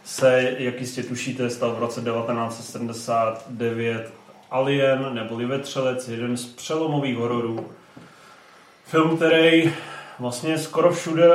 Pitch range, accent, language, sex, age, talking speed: 130-145 Hz, native, Czech, male, 30-49, 105 wpm